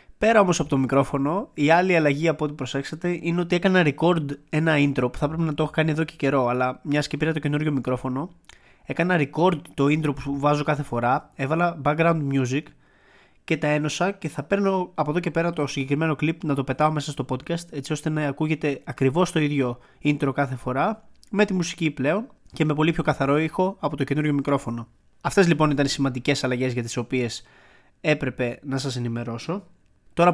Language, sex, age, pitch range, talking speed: Greek, male, 20-39, 140-170 Hz, 200 wpm